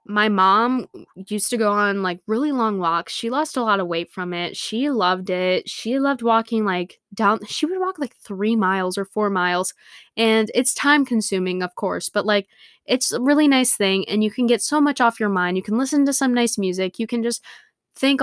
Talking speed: 225 wpm